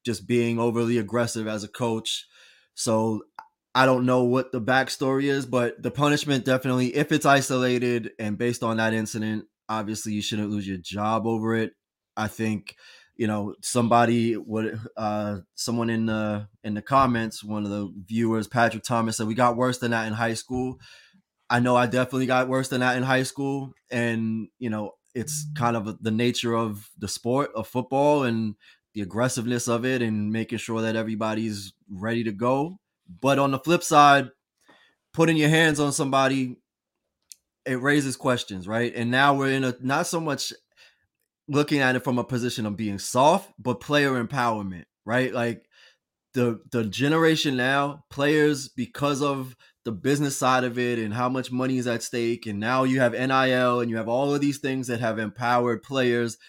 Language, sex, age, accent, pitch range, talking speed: English, male, 20-39, American, 110-130 Hz, 180 wpm